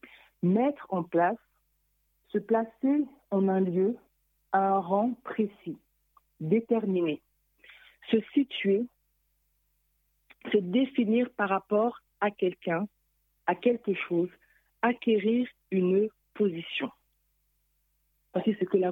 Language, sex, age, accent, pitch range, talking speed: French, female, 50-69, French, 185-230 Hz, 100 wpm